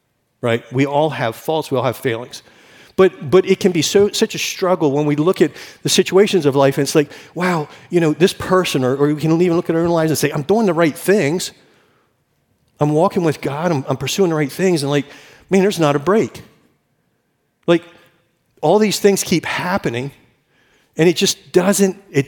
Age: 50-69